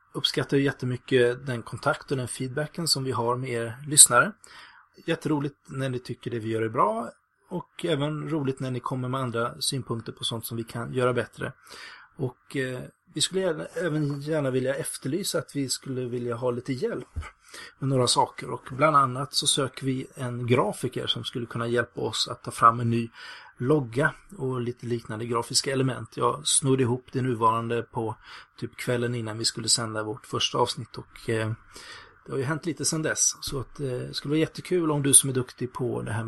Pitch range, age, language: 120-145 Hz, 30-49, Swedish